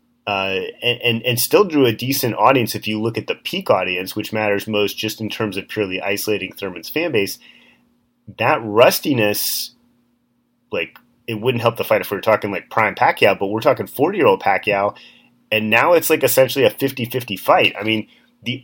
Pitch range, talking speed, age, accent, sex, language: 105-125 Hz, 190 wpm, 30-49, American, male, English